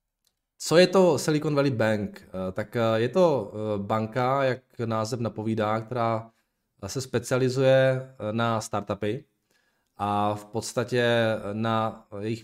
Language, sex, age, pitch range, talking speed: Czech, male, 20-39, 105-130 Hz, 110 wpm